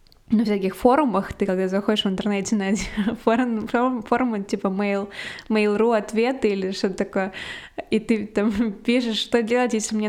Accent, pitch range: native, 185-225 Hz